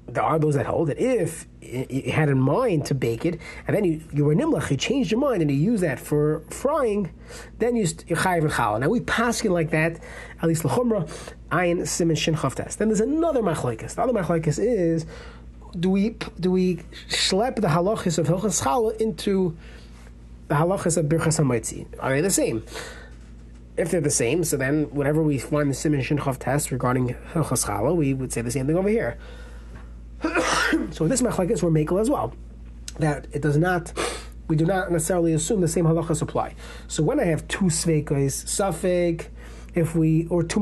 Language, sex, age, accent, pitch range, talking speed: English, male, 30-49, American, 140-180 Hz, 185 wpm